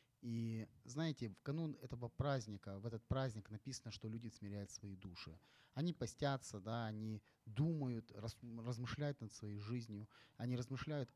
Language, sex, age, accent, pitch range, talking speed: Ukrainian, male, 30-49, native, 110-140 Hz, 135 wpm